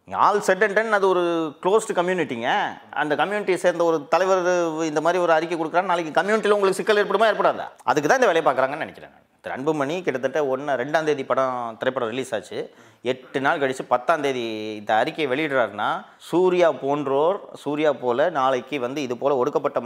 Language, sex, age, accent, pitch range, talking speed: Tamil, male, 30-49, native, 120-170 Hz, 170 wpm